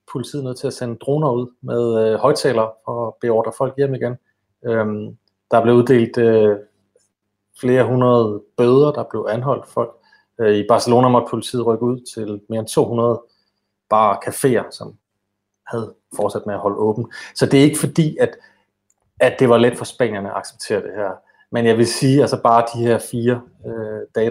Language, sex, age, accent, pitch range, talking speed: Danish, male, 30-49, native, 105-120 Hz, 190 wpm